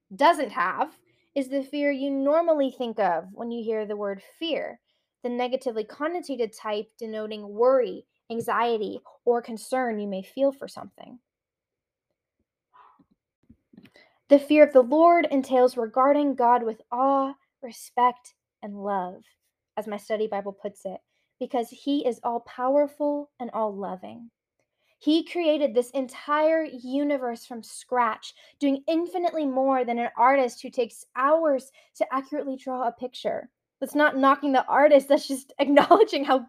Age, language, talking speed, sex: 10-29, English, 140 wpm, female